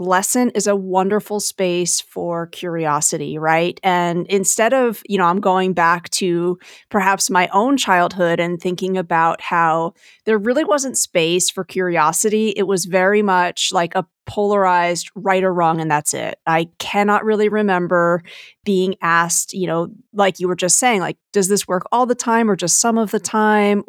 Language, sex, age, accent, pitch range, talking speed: English, female, 30-49, American, 175-210 Hz, 175 wpm